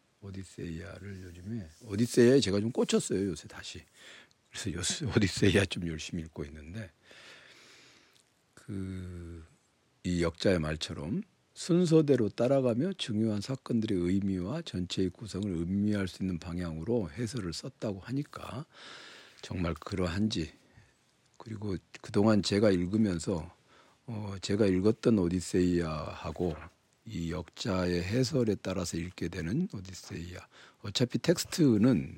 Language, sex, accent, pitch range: Korean, male, native, 90-115 Hz